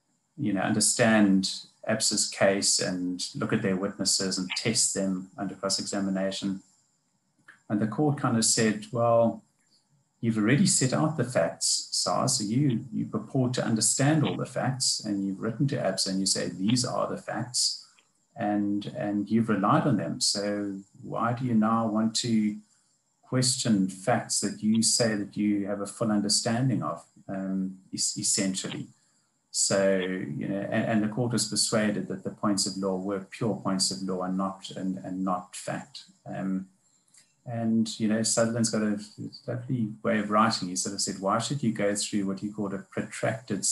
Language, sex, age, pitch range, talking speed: English, male, 30-49, 95-120 Hz, 175 wpm